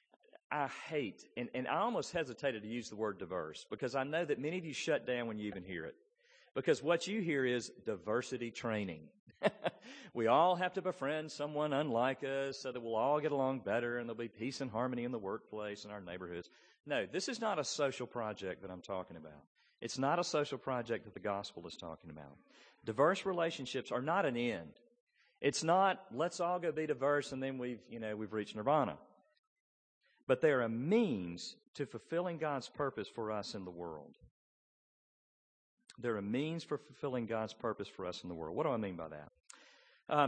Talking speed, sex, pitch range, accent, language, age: 205 wpm, male, 105-150 Hz, American, English, 40-59